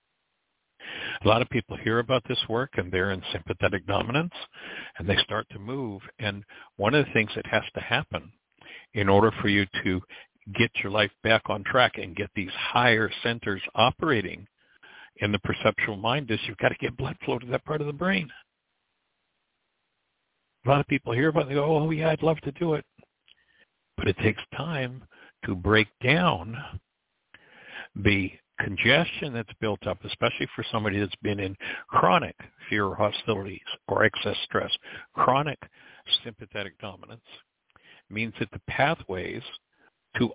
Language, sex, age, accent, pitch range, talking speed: English, male, 60-79, American, 105-130 Hz, 165 wpm